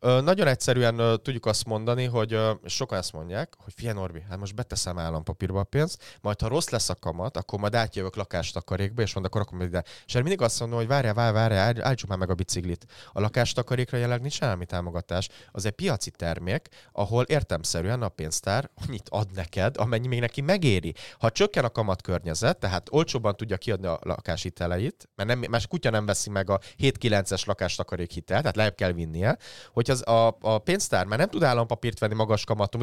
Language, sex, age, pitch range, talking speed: Hungarian, male, 30-49, 100-130 Hz, 195 wpm